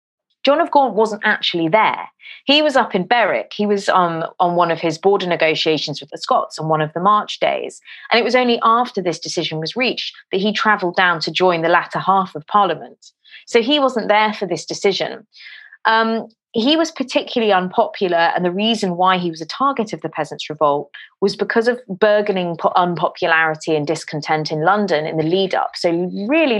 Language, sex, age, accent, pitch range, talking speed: English, female, 30-49, British, 165-210 Hz, 200 wpm